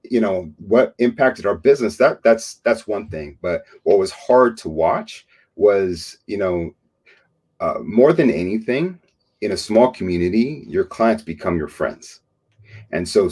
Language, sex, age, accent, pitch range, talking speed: English, male, 30-49, American, 85-105 Hz, 160 wpm